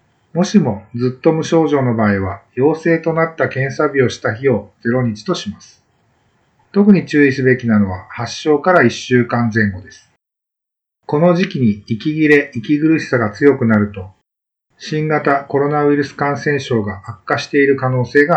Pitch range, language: 110-150 Hz, Japanese